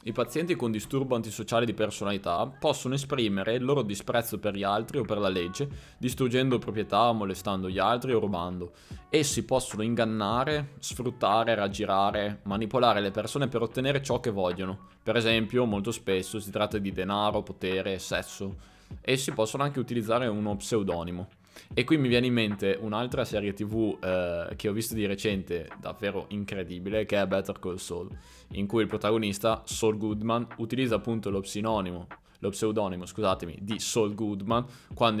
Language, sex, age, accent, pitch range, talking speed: Italian, male, 20-39, native, 95-120 Hz, 160 wpm